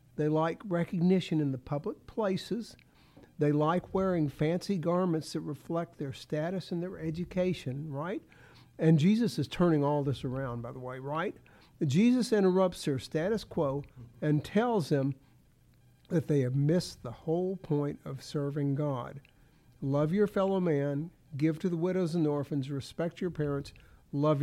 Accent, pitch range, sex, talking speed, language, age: American, 140-180 Hz, male, 155 wpm, English, 60-79